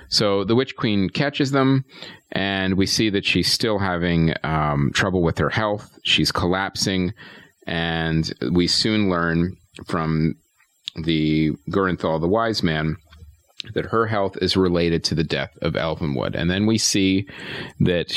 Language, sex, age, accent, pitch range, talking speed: English, male, 40-59, American, 80-95 Hz, 150 wpm